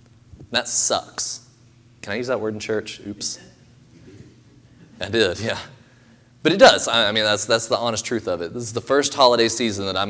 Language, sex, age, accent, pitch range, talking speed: English, male, 20-39, American, 105-125 Hz, 200 wpm